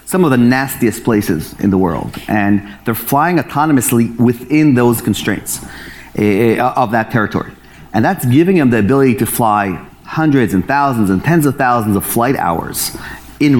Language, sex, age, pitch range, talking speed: English, male, 30-49, 105-130 Hz, 170 wpm